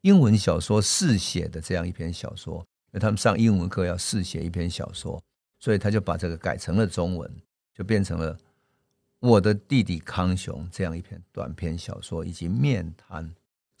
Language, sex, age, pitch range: Chinese, male, 50-69, 85-105 Hz